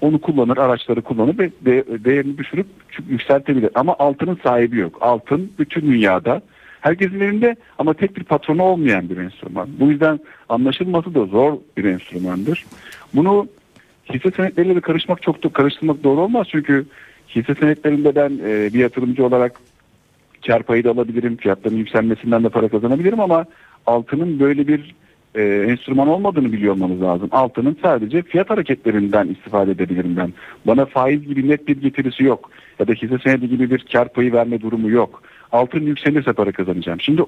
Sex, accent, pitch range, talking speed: male, native, 115-155 Hz, 150 wpm